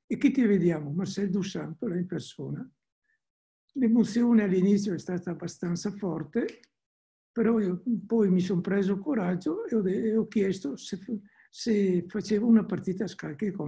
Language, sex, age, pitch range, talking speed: Italian, male, 60-79, 180-230 Hz, 145 wpm